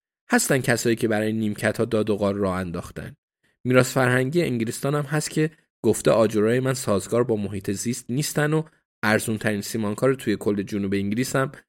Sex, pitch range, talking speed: male, 110-140 Hz, 165 wpm